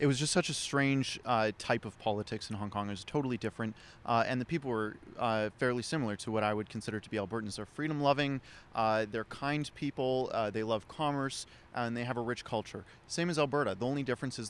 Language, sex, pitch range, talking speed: English, male, 110-135 Hz, 230 wpm